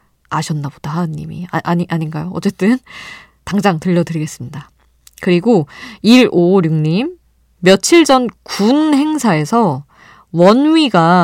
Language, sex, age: Korean, female, 20-39